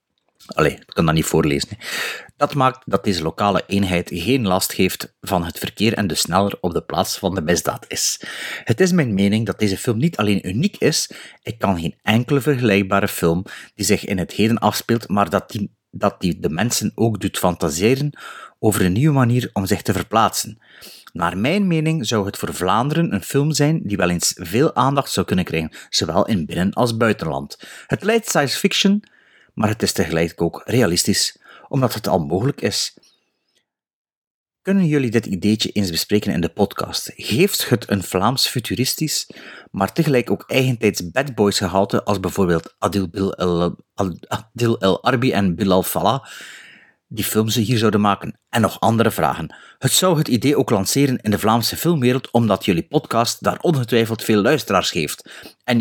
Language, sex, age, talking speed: Dutch, male, 30-49, 175 wpm